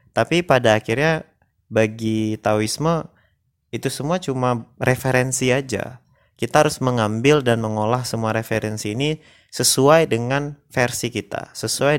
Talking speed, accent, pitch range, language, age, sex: 115 wpm, native, 110-135 Hz, Indonesian, 30-49, male